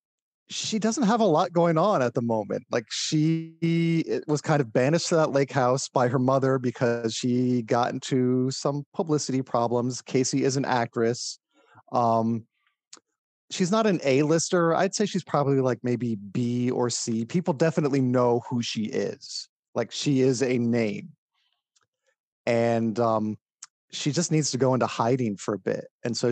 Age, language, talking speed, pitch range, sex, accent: 30-49, English, 165 wpm, 120-155 Hz, male, American